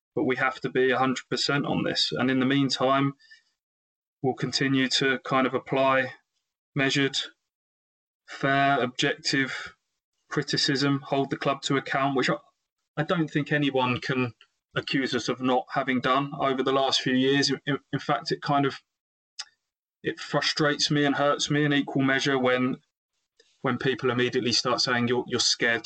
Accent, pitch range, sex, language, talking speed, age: British, 115-140 Hz, male, English, 160 wpm, 20-39